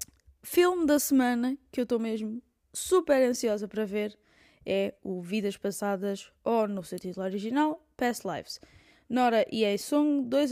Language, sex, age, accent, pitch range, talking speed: Portuguese, female, 20-39, Brazilian, 195-245 Hz, 150 wpm